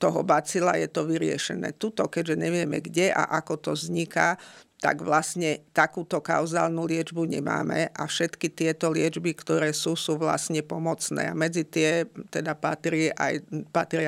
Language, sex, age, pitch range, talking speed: Slovak, female, 50-69, 155-170 Hz, 140 wpm